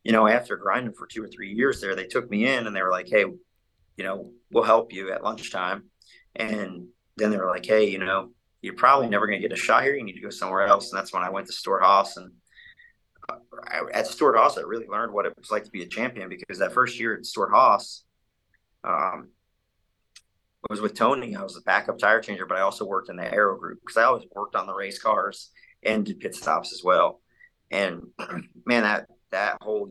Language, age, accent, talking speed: English, 30-49, American, 235 wpm